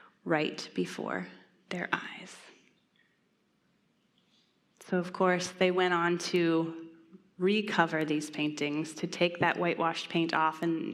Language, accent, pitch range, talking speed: English, American, 170-210 Hz, 115 wpm